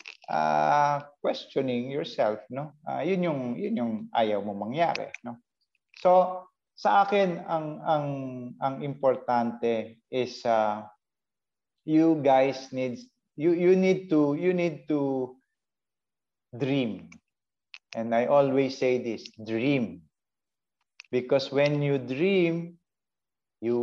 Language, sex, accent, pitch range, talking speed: Filipino, male, native, 115-160 Hz, 110 wpm